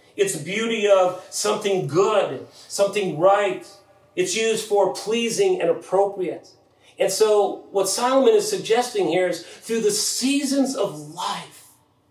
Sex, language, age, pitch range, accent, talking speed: male, English, 40-59, 145-185 Hz, American, 130 wpm